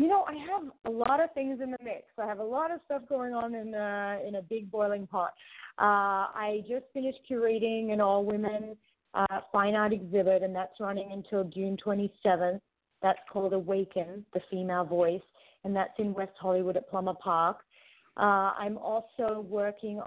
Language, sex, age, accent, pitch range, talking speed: English, female, 30-49, American, 185-220 Hz, 185 wpm